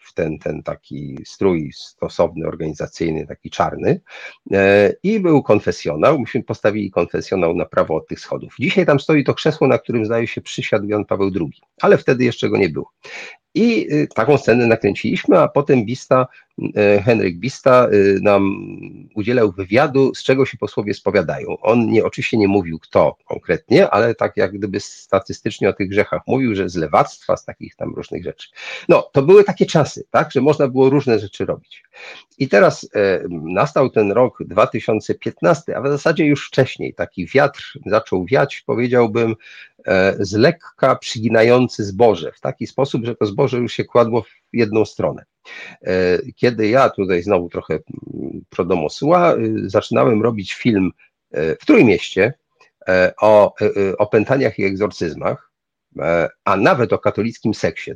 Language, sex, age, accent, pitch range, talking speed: Polish, male, 40-59, native, 105-145 Hz, 150 wpm